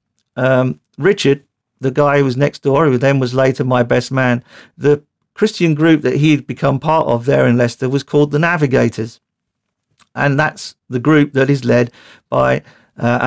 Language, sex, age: English, male, 50-69